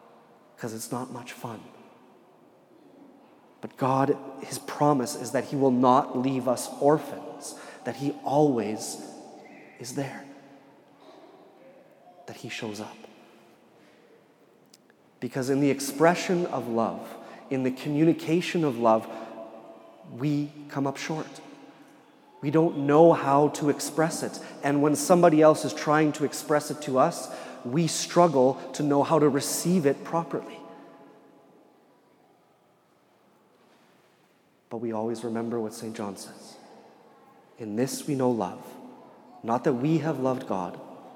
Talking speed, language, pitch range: 125 wpm, English, 120-150 Hz